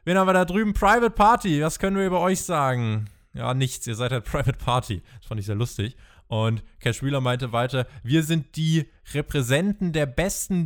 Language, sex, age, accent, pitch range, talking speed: German, male, 20-39, German, 120-155 Hz, 205 wpm